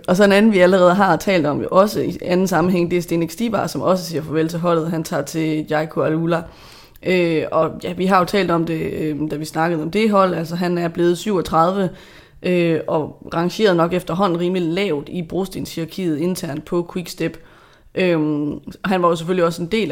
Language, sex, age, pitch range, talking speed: Danish, female, 20-39, 160-185 Hz, 210 wpm